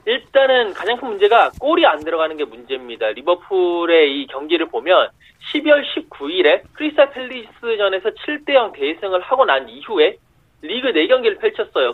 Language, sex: Korean, male